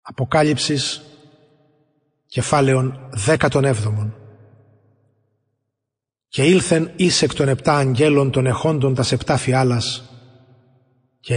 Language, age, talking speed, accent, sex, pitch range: English, 30-49, 95 wpm, Greek, male, 125-150 Hz